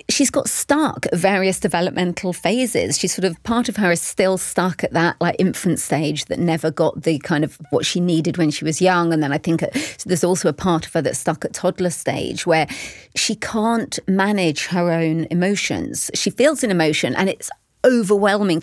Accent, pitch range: British, 165-205 Hz